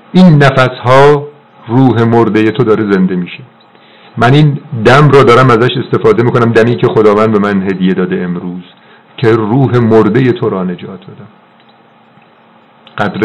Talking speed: 145 wpm